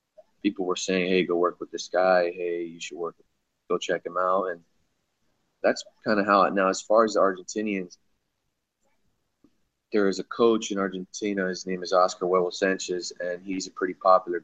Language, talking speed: English, 190 wpm